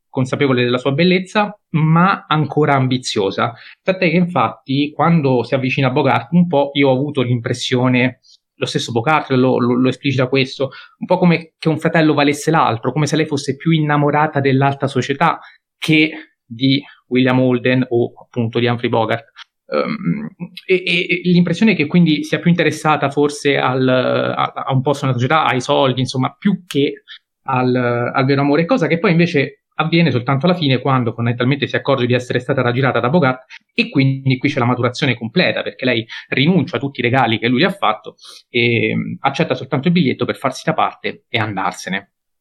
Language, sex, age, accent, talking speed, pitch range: Italian, male, 20-39, native, 180 wpm, 125-155 Hz